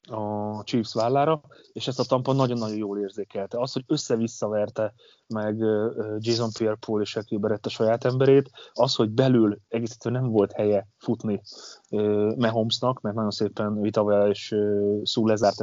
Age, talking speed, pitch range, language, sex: 30-49, 140 wpm, 105-125 Hz, Hungarian, male